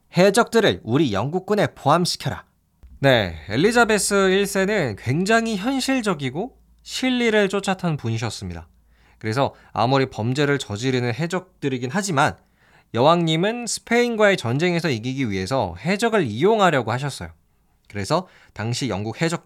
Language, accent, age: Korean, native, 20-39